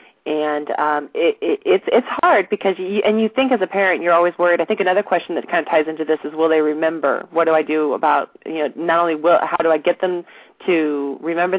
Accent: American